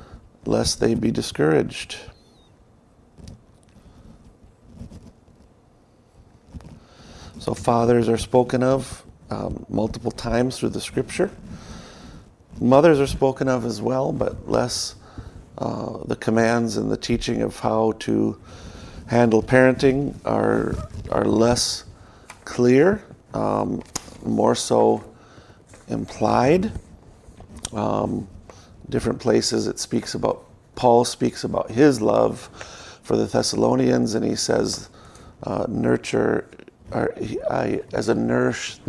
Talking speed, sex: 100 wpm, male